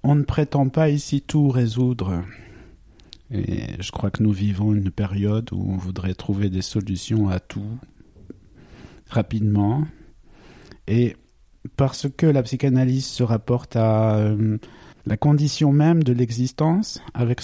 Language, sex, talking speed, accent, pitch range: French, male, 135 wpm, French, 115-140 Hz